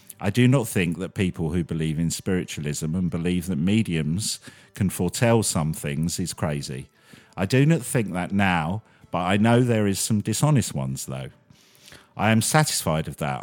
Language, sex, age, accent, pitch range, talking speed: English, male, 50-69, British, 90-120 Hz, 180 wpm